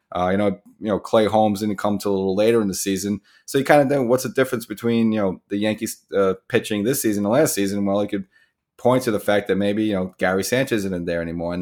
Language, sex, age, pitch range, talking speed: English, male, 30-49, 95-115 Hz, 285 wpm